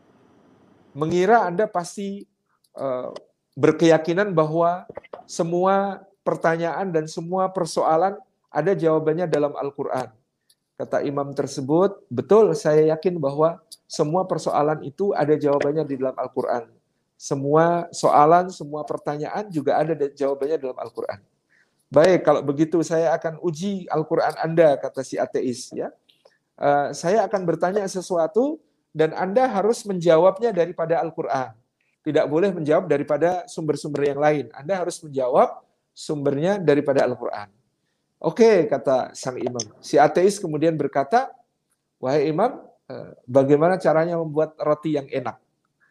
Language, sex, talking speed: Malay, male, 120 wpm